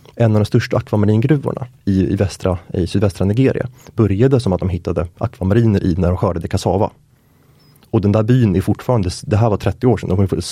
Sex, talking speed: male, 210 wpm